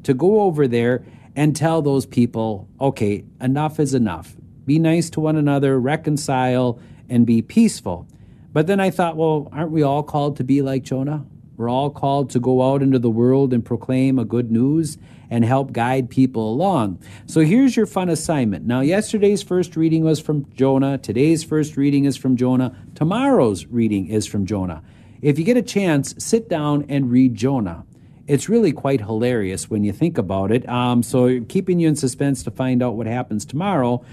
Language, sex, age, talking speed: English, male, 40-59, 190 wpm